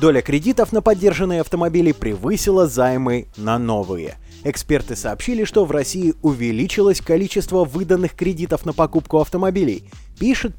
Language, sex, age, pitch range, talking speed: Russian, male, 20-39, 120-195 Hz, 125 wpm